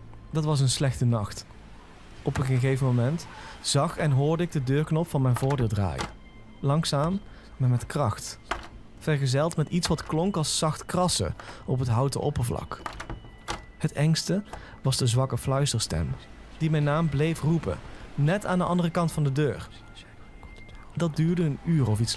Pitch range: 120-160 Hz